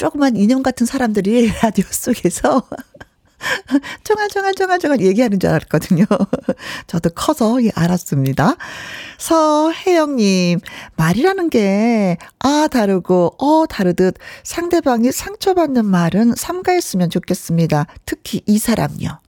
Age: 40-59